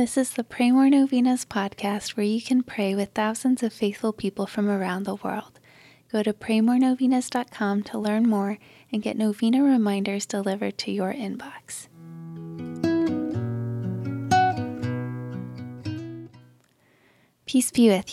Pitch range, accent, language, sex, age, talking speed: 195-225 Hz, American, English, female, 20-39, 120 wpm